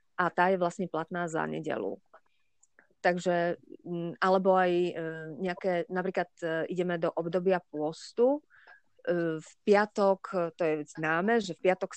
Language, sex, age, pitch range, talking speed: Slovak, female, 30-49, 165-190 Hz, 120 wpm